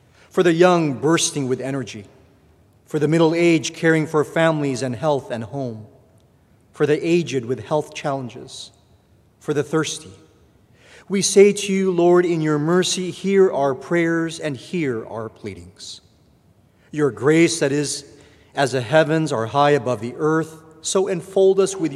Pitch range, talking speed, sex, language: 130-165 Hz, 155 wpm, male, English